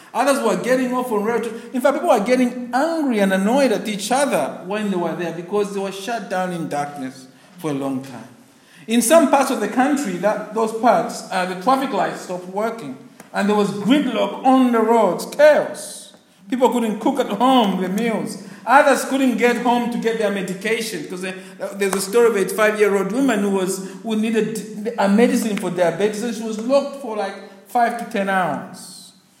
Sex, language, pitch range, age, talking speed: male, English, 200-260 Hz, 50-69, 200 wpm